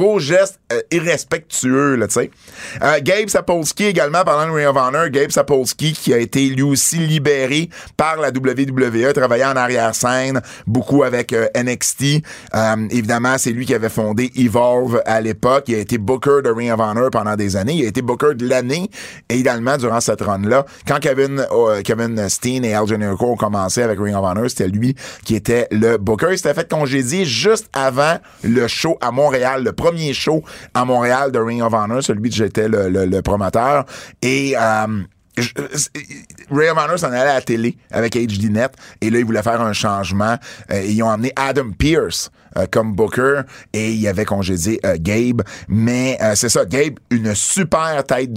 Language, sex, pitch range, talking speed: French, male, 105-135 Hz, 195 wpm